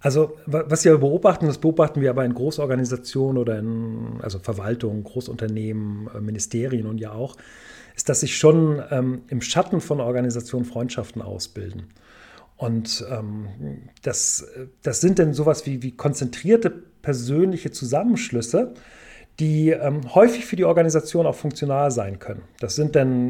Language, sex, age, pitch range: German, male, 40-59, 120-155 Hz